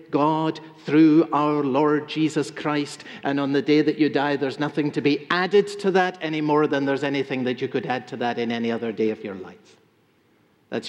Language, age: English, 50-69